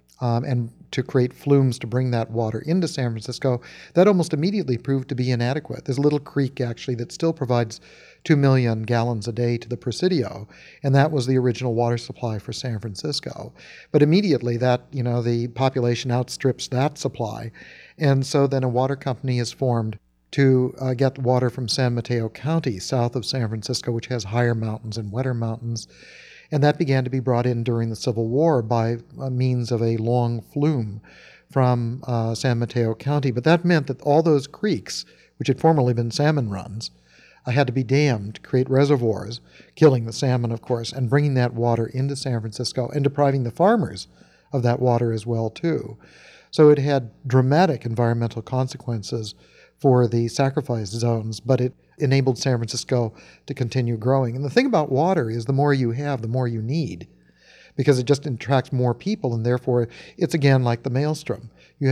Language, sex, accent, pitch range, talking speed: English, male, American, 120-140 Hz, 190 wpm